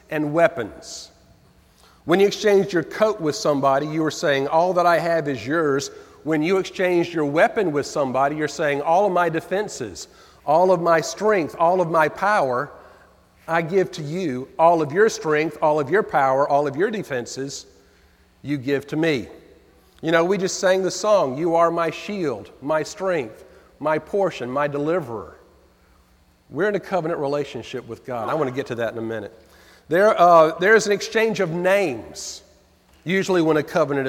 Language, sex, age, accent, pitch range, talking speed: English, male, 40-59, American, 150-185 Hz, 180 wpm